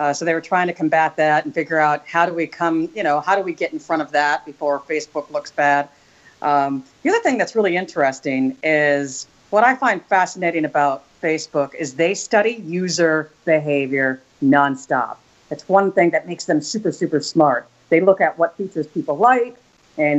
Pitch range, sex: 150-200 Hz, female